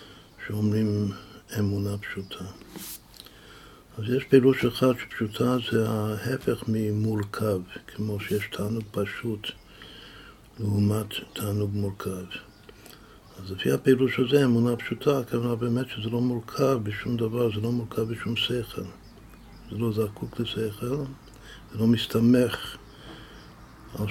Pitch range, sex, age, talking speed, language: 105-120 Hz, male, 60-79, 110 wpm, Hebrew